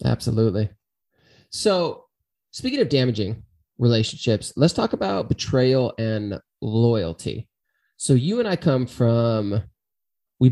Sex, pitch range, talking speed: male, 110-130 Hz, 110 wpm